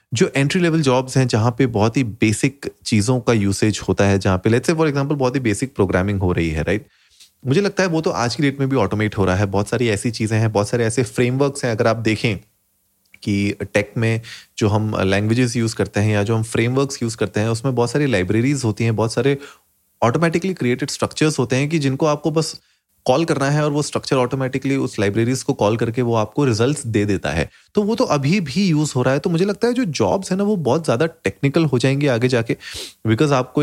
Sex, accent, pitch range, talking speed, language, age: male, native, 110-145 Hz, 240 wpm, Hindi, 30-49